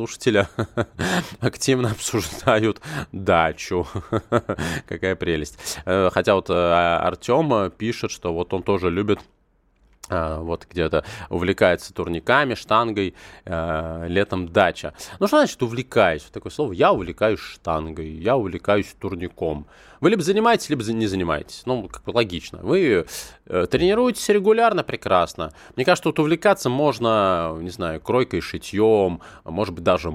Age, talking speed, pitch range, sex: 20-39, 120 wpm, 85-130 Hz, male